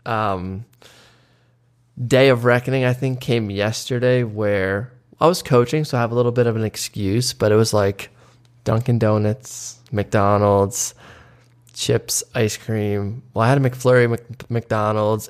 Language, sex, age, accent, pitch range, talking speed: English, male, 20-39, American, 110-125 Hz, 150 wpm